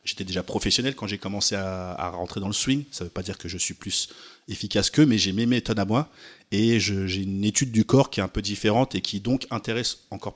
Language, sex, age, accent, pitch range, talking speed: French, male, 30-49, French, 95-115 Hz, 265 wpm